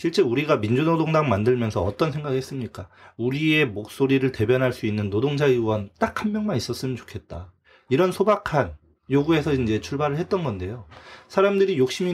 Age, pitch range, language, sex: 30-49, 105-160 Hz, Korean, male